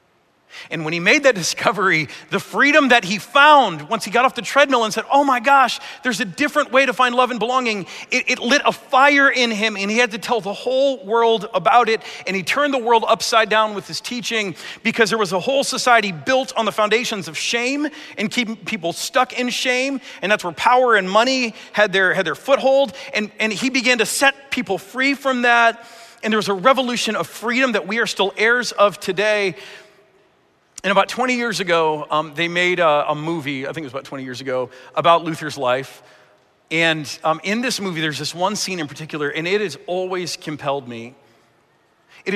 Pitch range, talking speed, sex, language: 175-245 Hz, 215 wpm, male, English